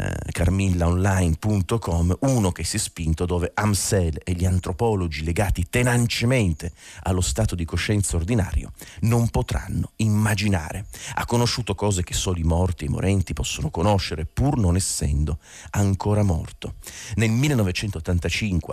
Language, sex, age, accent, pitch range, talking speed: Italian, male, 40-59, native, 85-100 Hz, 130 wpm